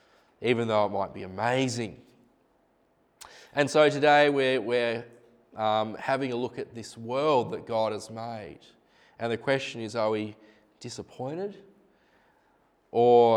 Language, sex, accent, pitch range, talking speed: English, male, Australian, 110-125 Hz, 135 wpm